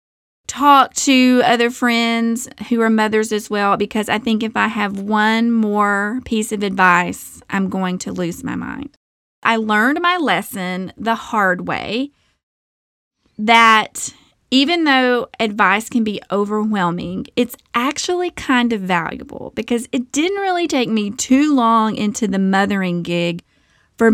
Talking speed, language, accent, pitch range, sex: 145 wpm, English, American, 200-255 Hz, female